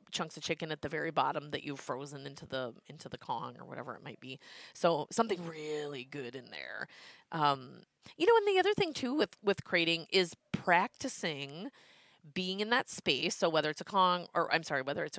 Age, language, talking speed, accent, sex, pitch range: 30-49, English, 210 wpm, American, female, 155-200 Hz